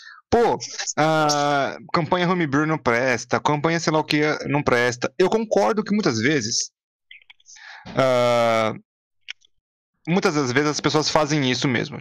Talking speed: 130 wpm